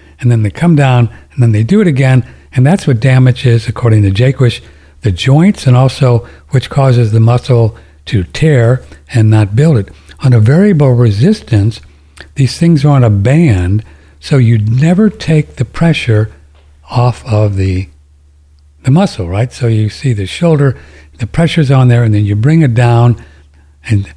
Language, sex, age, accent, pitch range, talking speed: English, male, 60-79, American, 95-130 Hz, 175 wpm